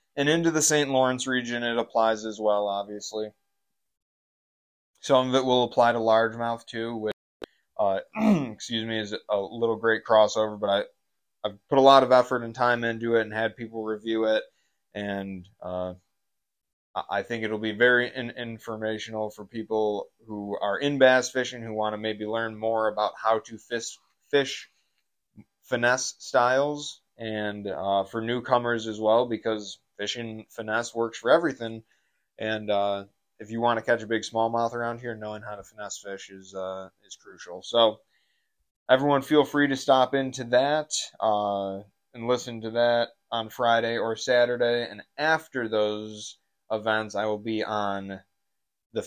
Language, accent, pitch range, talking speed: English, American, 100-120 Hz, 165 wpm